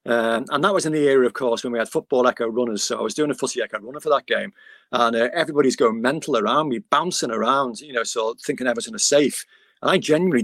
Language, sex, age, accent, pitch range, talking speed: English, male, 40-59, British, 120-155 Hz, 270 wpm